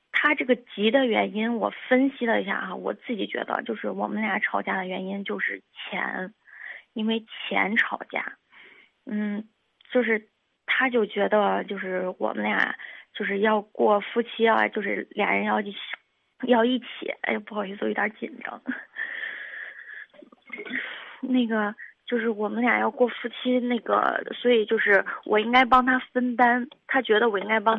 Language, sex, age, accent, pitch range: Chinese, female, 20-39, native, 215-250 Hz